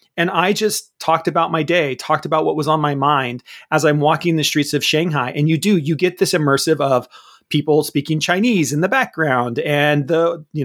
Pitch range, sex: 140-180 Hz, male